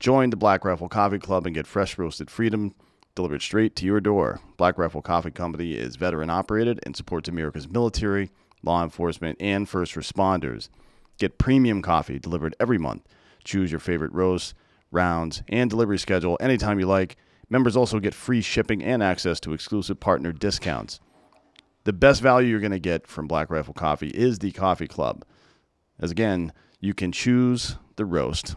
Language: English